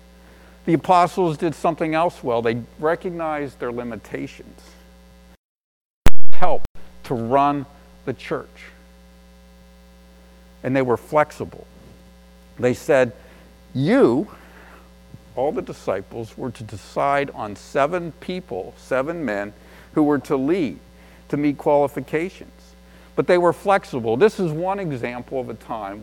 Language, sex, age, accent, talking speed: English, male, 50-69, American, 120 wpm